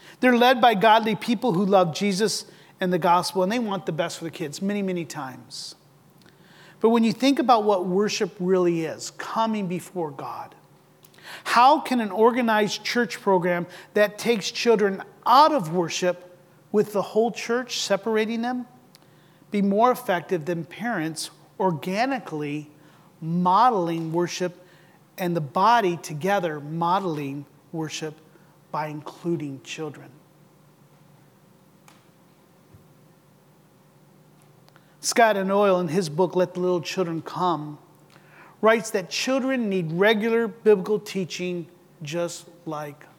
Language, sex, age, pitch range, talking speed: English, male, 40-59, 170-220 Hz, 125 wpm